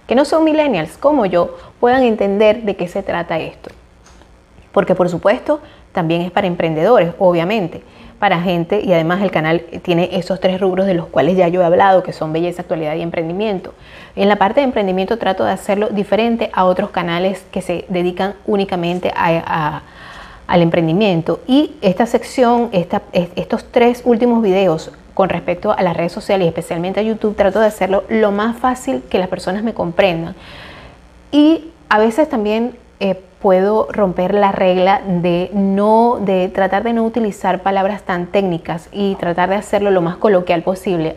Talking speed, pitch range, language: 170 wpm, 180-210 Hz, Spanish